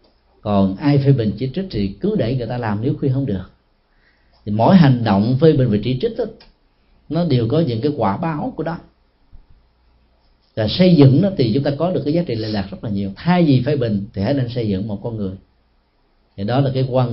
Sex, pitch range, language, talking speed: male, 105-160 Hz, Vietnamese, 240 wpm